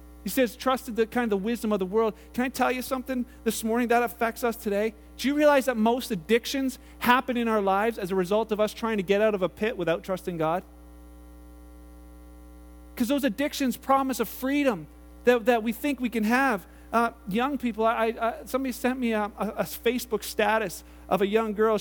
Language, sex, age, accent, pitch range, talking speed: English, male, 40-59, American, 155-235 Hz, 210 wpm